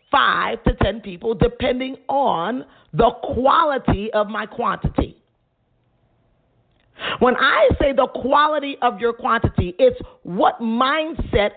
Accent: American